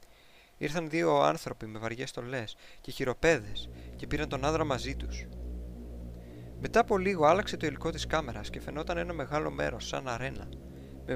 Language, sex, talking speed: Greek, male, 160 wpm